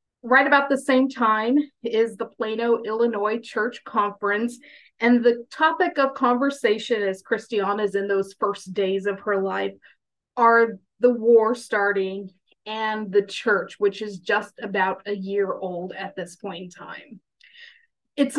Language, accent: English, American